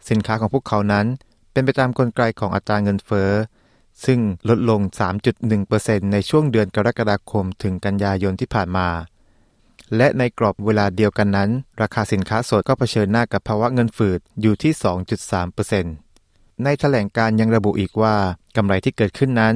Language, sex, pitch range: Thai, male, 100-120 Hz